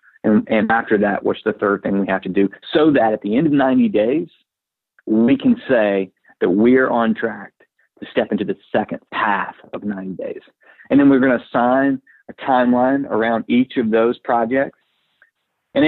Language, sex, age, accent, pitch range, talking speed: English, male, 50-69, American, 110-140 Hz, 190 wpm